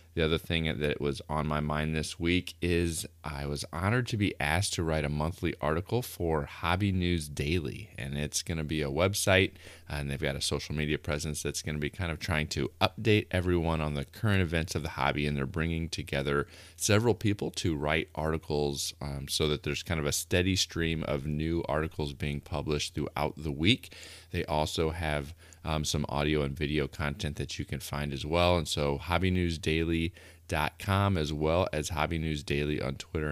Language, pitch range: English, 75-90 Hz